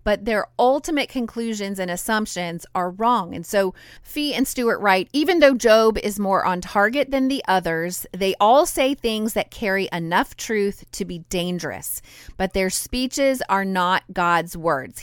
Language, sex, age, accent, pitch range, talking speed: English, female, 30-49, American, 175-235 Hz, 170 wpm